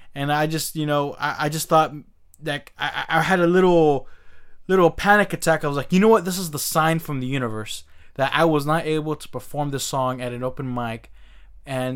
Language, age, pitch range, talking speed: English, 20-39, 130-175 Hz, 225 wpm